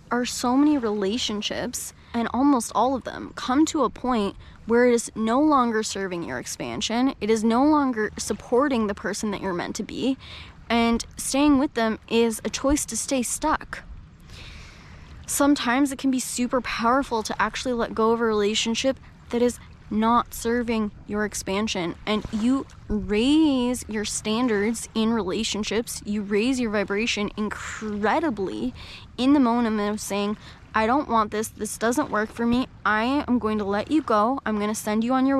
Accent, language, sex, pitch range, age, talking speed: American, English, female, 210-255 Hz, 10-29, 175 wpm